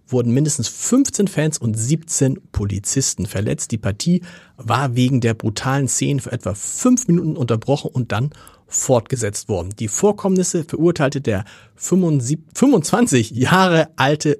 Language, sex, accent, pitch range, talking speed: German, male, German, 115-155 Hz, 130 wpm